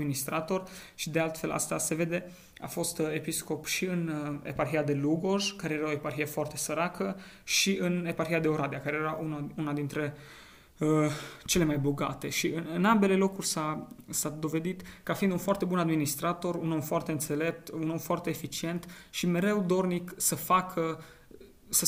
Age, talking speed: 20-39, 175 wpm